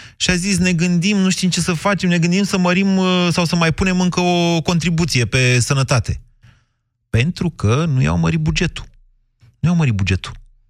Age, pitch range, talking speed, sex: 30-49, 115-160 Hz, 185 wpm, male